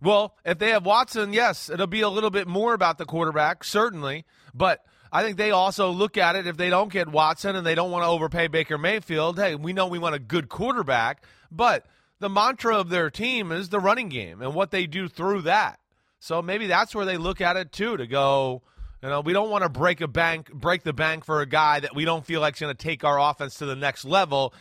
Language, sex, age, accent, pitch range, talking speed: English, male, 30-49, American, 145-205 Hz, 250 wpm